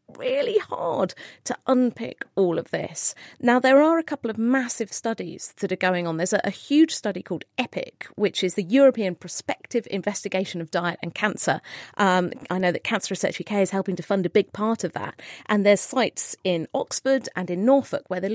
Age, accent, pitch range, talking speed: 40-59, British, 180-240 Hz, 205 wpm